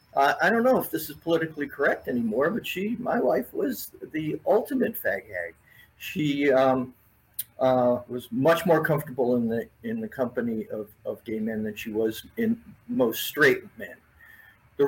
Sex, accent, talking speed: male, American, 175 wpm